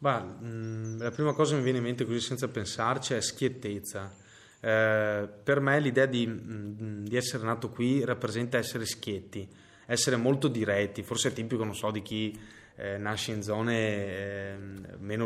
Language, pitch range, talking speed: Italian, 105-120 Hz, 145 wpm